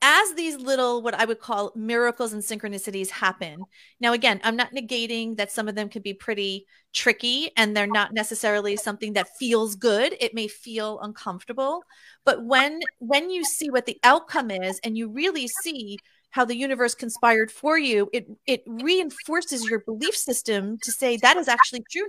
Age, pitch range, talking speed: 30-49, 215-265 Hz, 180 wpm